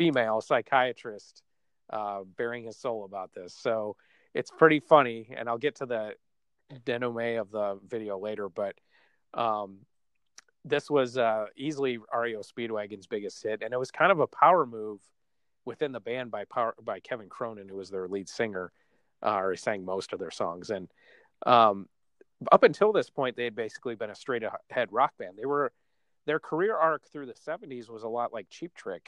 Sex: male